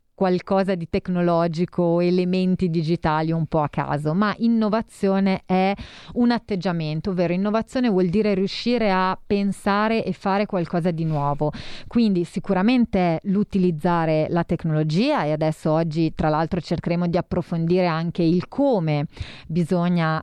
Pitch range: 165-200 Hz